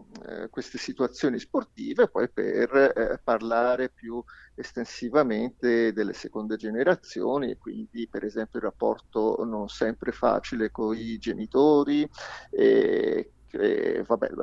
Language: Italian